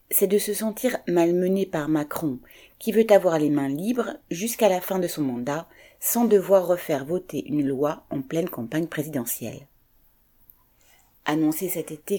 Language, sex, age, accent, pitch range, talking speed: French, female, 30-49, French, 155-210 Hz, 160 wpm